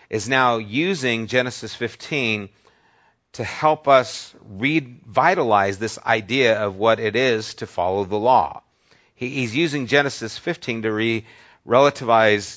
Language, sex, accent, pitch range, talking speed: English, male, American, 100-135 Hz, 120 wpm